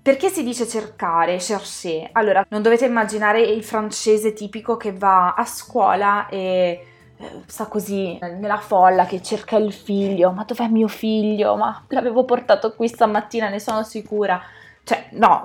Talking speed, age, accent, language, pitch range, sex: 150 wpm, 20-39, native, Italian, 190-225 Hz, female